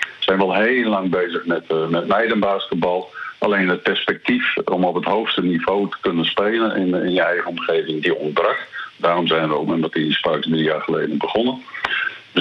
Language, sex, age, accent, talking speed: Dutch, male, 50-69, Dutch, 195 wpm